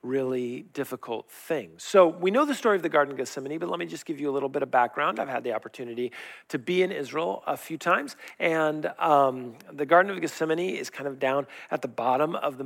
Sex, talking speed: male, 235 wpm